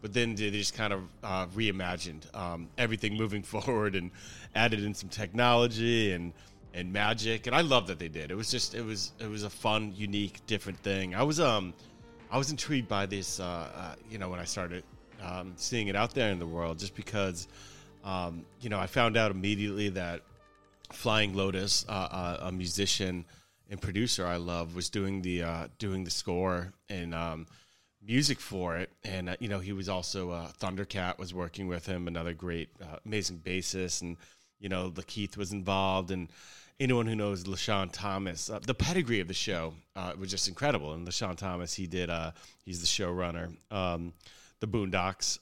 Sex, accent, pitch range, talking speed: male, American, 90-105 Hz, 195 wpm